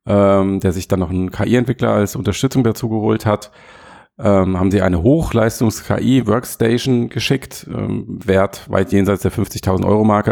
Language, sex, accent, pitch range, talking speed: German, male, German, 95-115 Hz, 140 wpm